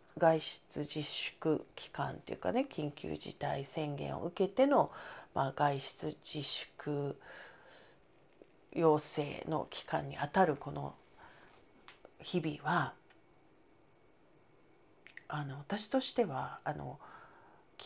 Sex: female